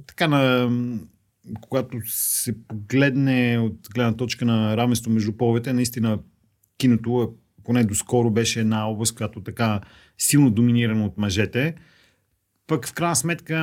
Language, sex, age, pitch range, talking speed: Bulgarian, male, 40-59, 110-130 Hz, 130 wpm